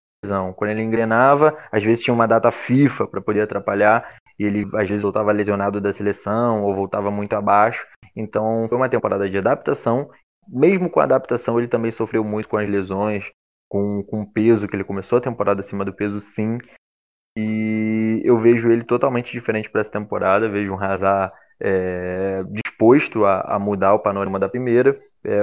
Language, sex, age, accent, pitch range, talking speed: Portuguese, male, 20-39, Brazilian, 100-115 Hz, 180 wpm